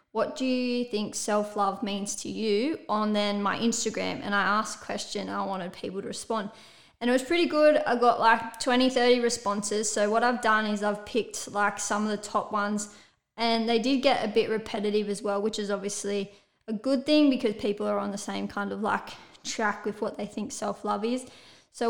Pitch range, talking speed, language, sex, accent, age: 210-245 Hz, 215 wpm, English, female, Australian, 20-39